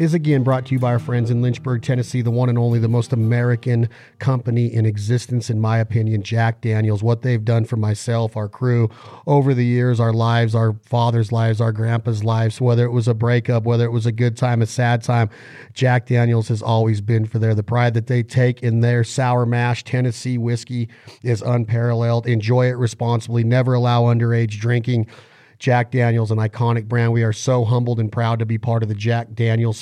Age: 40-59